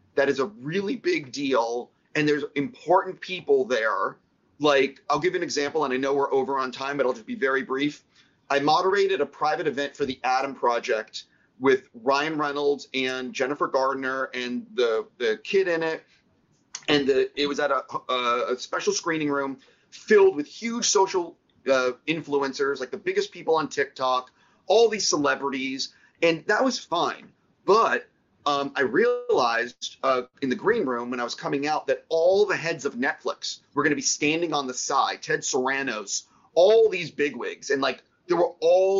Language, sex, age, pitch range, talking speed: English, male, 30-49, 130-180 Hz, 180 wpm